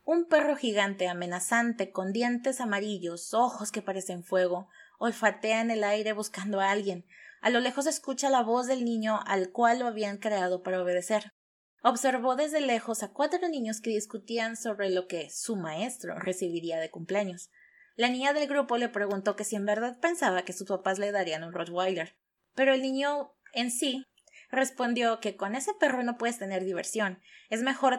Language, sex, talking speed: Spanish, female, 180 wpm